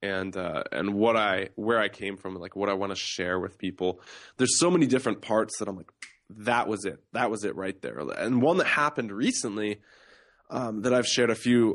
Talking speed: 225 wpm